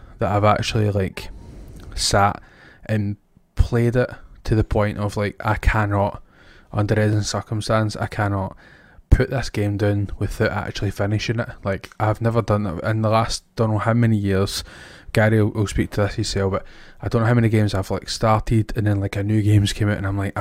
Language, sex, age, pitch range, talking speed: English, male, 20-39, 100-115 Hz, 200 wpm